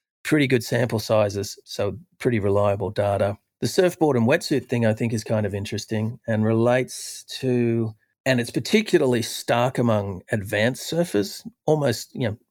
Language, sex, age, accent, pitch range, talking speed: English, male, 40-59, Australian, 105-125 Hz, 150 wpm